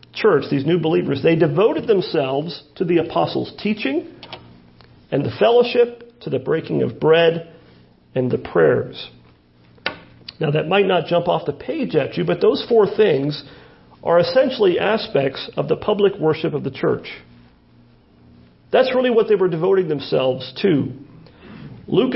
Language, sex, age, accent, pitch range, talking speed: English, male, 40-59, American, 130-215 Hz, 150 wpm